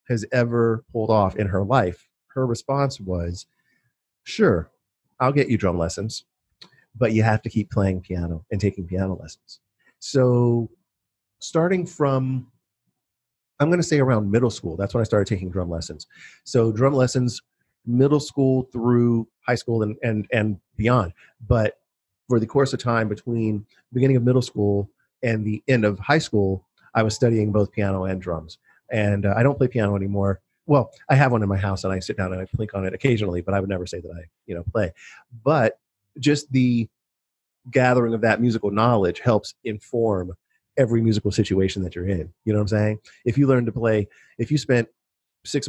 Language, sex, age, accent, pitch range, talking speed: English, male, 40-59, American, 100-125 Hz, 190 wpm